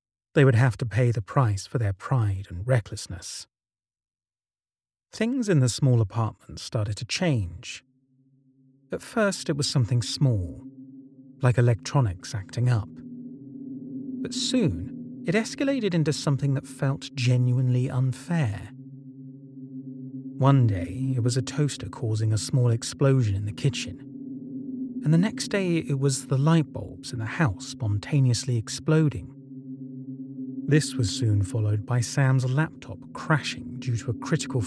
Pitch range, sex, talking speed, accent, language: 120-145 Hz, male, 135 wpm, British, English